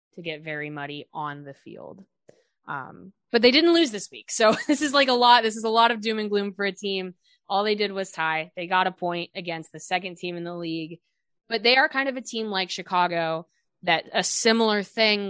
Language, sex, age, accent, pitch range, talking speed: English, female, 20-39, American, 170-230 Hz, 235 wpm